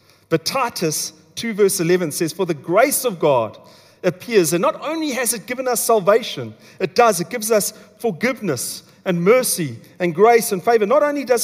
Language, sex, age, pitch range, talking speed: English, male, 40-59, 160-220 Hz, 185 wpm